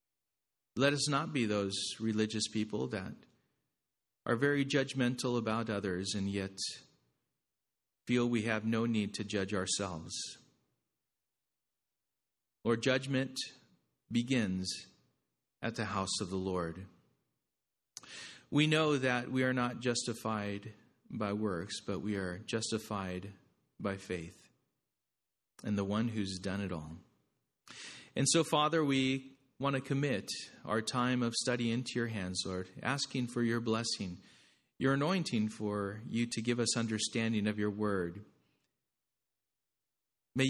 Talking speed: 125 wpm